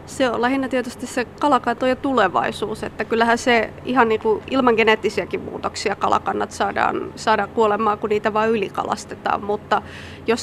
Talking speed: 155 wpm